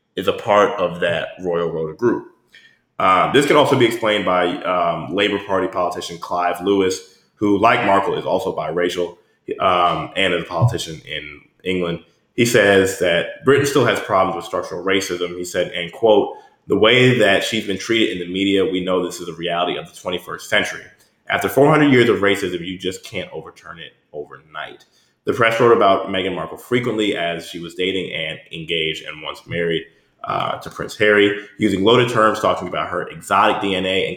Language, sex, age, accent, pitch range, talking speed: English, male, 20-39, American, 90-115 Hz, 190 wpm